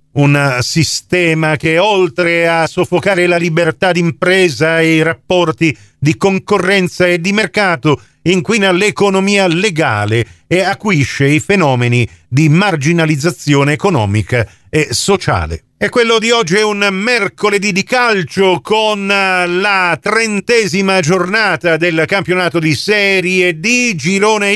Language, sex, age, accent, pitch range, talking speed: Italian, male, 50-69, native, 140-190 Hz, 115 wpm